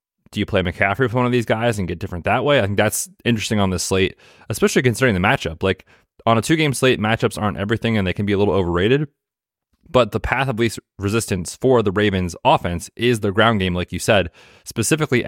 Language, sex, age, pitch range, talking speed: English, male, 20-39, 95-115 Hz, 225 wpm